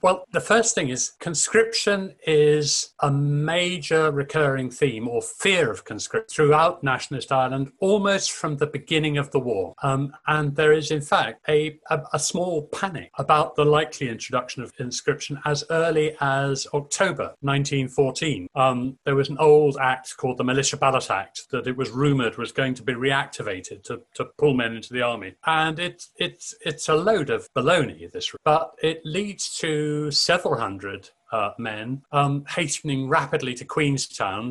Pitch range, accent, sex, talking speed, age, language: 130-155 Hz, British, male, 165 wpm, 40-59, English